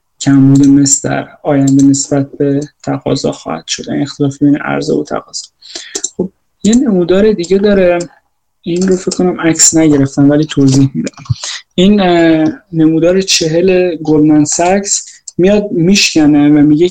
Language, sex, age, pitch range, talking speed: Persian, male, 20-39, 145-175 Hz, 130 wpm